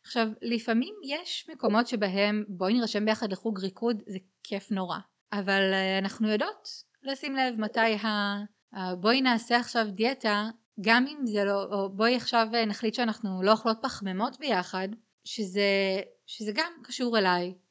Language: Hebrew